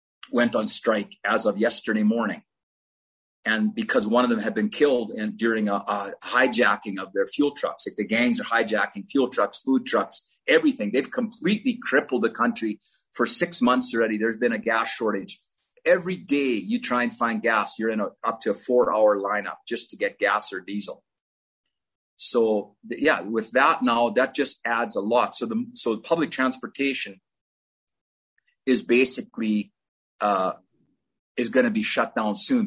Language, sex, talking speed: English, male, 175 wpm